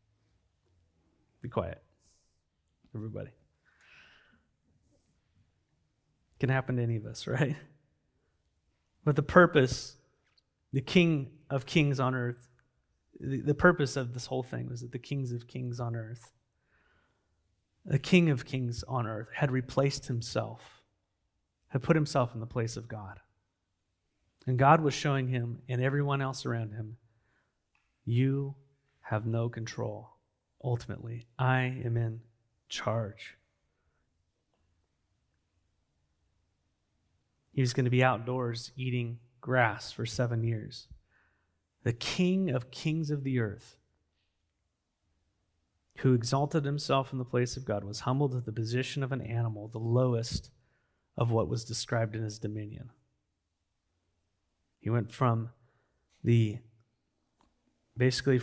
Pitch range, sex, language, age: 100-130 Hz, male, English, 30-49